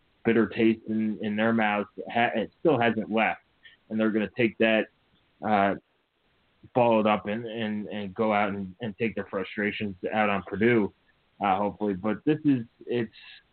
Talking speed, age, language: 180 wpm, 30-49, English